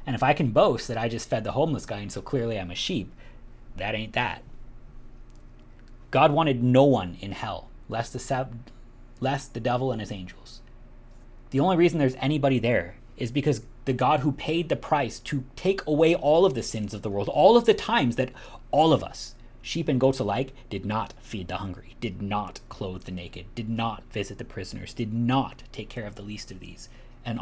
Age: 30-49